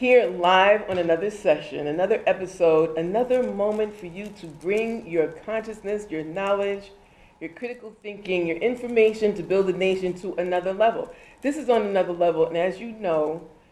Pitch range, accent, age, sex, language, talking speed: 165-220 Hz, American, 40-59, female, English, 165 wpm